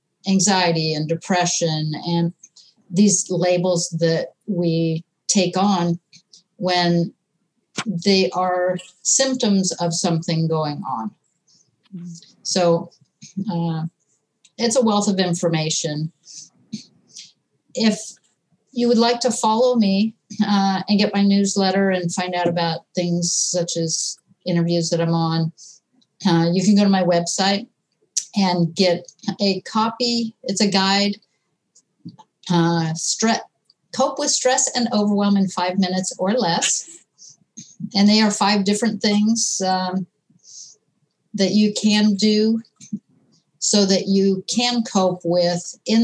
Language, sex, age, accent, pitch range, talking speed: English, female, 50-69, American, 170-205 Hz, 120 wpm